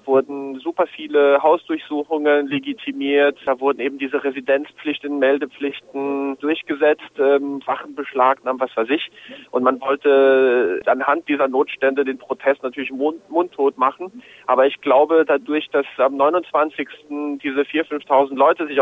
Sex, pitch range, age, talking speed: male, 130-150 Hz, 40-59, 135 wpm